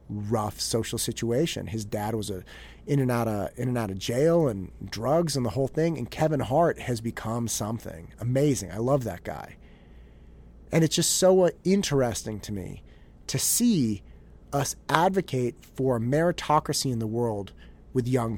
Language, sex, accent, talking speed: English, male, American, 165 wpm